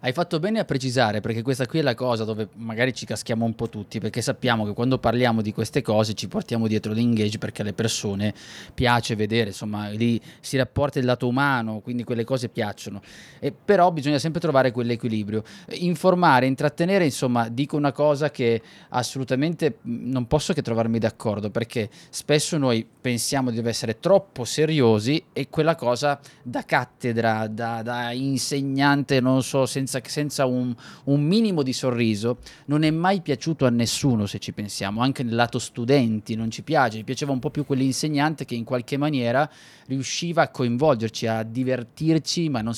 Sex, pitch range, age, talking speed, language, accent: male, 115-140 Hz, 20-39, 175 wpm, Italian, native